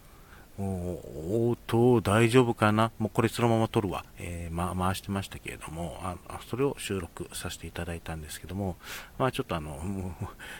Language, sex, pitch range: Japanese, male, 90-120 Hz